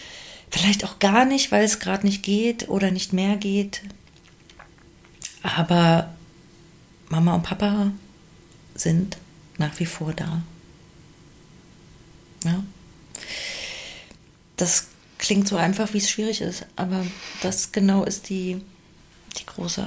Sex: female